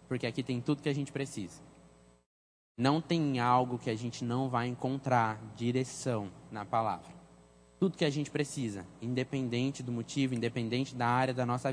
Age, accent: 10-29, Brazilian